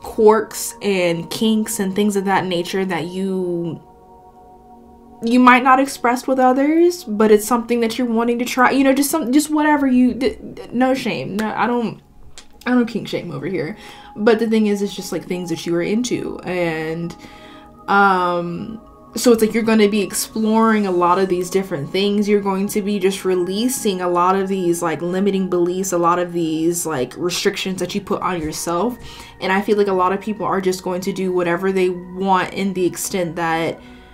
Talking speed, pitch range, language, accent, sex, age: 205 wpm, 175-220 Hz, English, American, female, 20-39